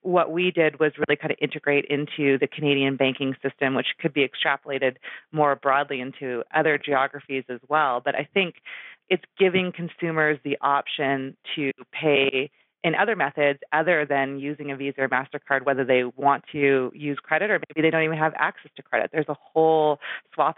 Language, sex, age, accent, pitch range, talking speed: English, female, 30-49, American, 135-155 Hz, 185 wpm